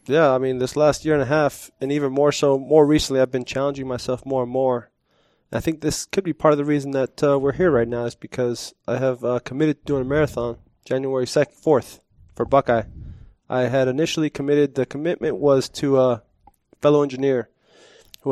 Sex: male